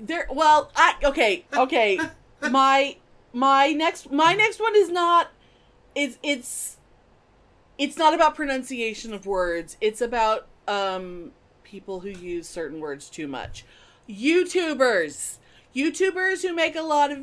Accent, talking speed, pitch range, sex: American, 130 wpm, 220-300 Hz, female